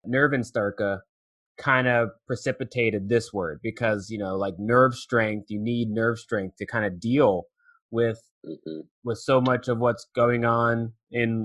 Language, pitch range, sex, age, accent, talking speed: English, 110-135 Hz, male, 20-39, American, 150 wpm